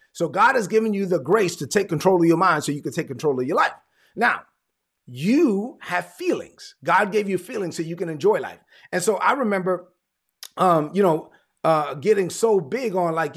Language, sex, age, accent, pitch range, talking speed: English, male, 30-49, American, 155-215 Hz, 210 wpm